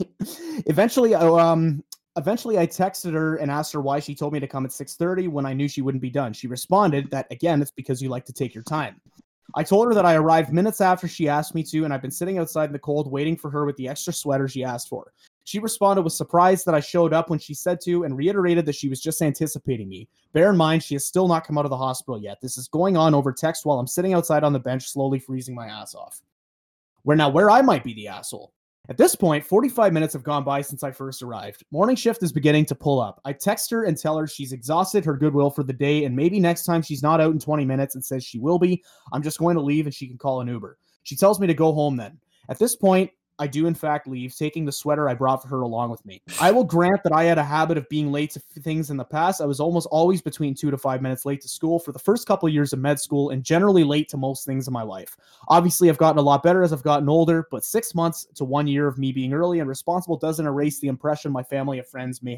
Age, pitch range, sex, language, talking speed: 20-39, 135-170 Hz, male, English, 275 wpm